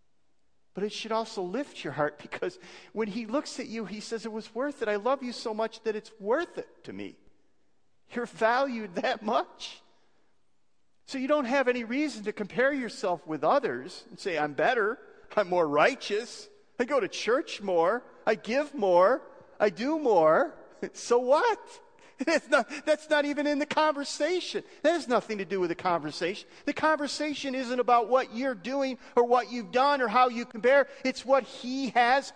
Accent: American